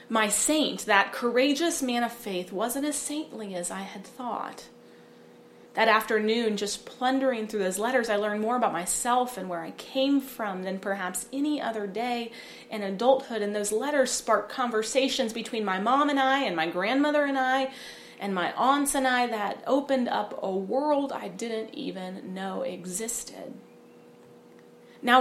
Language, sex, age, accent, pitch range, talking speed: English, female, 30-49, American, 200-260 Hz, 165 wpm